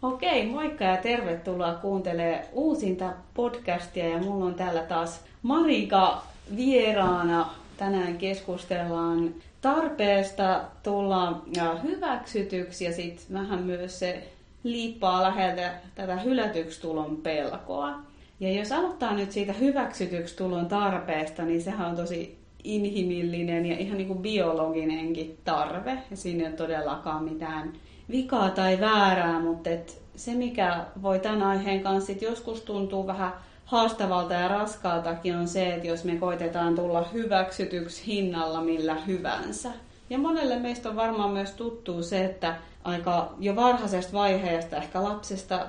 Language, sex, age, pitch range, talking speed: Finnish, female, 30-49, 170-205 Hz, 125 wpm